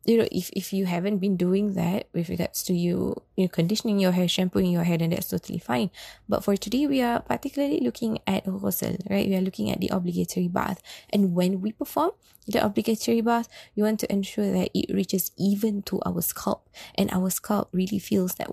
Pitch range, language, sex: 175-205 Hz, English, female